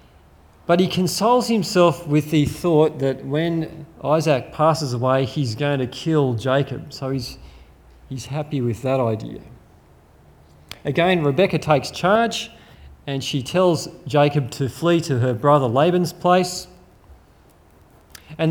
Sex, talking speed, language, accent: male, 130 wpm, English, Australian